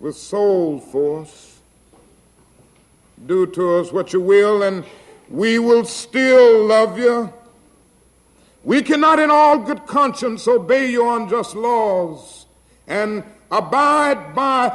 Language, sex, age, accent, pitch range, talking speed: English, male, 60-79, American, 210-265 Hz, 115 wpm